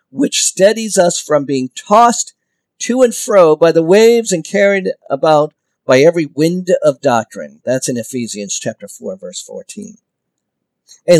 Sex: male